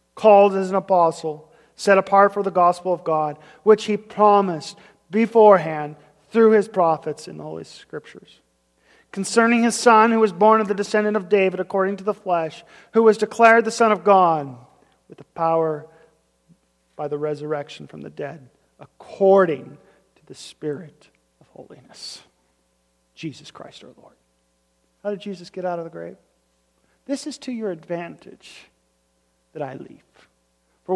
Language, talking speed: English, 155 wpm